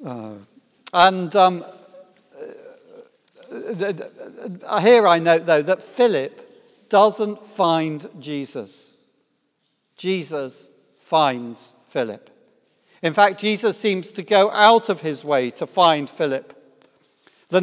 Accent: British